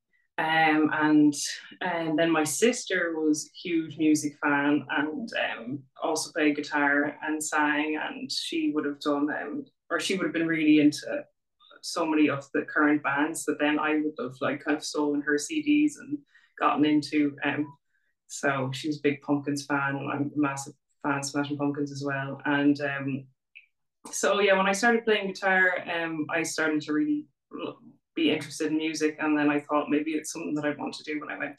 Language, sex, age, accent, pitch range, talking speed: English, female, 20-39, Irish, 150-175 Hz, 190 wpm